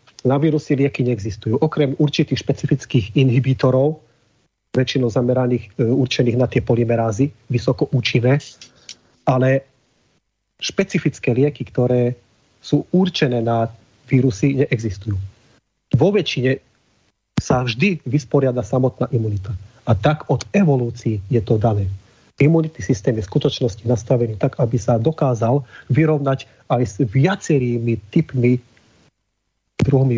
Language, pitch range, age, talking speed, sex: Slovak, 115-140 Hz, 40-59, 110 wpm, male